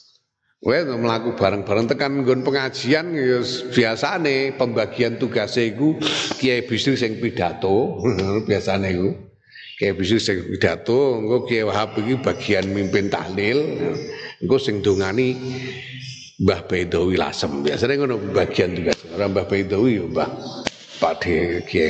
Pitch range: 115-190 Hz